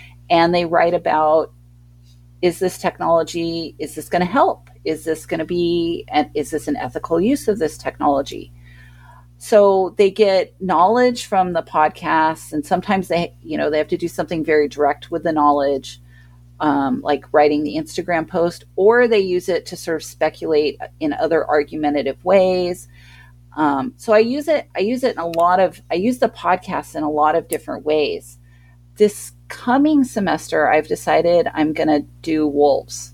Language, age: English, 40-59